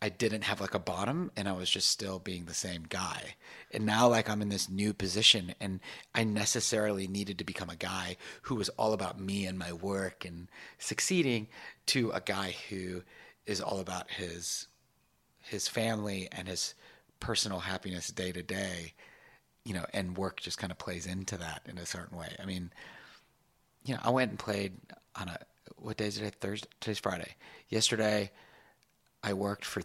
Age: 30-49